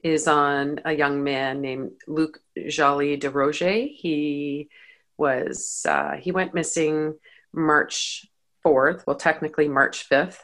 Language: English